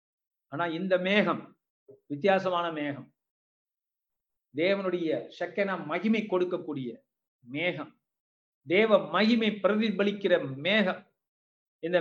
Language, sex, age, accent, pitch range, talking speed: Tamil, male, 50-69, native, 175-210 Hz, 70 wpm